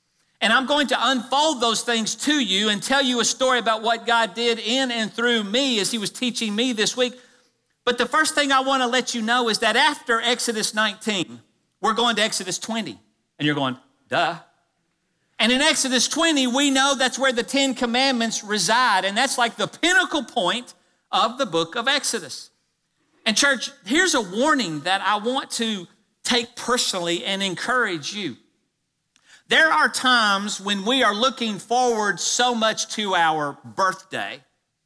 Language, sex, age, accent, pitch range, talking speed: English, male, 50-69, American, 200-255 Hz, 175 wpm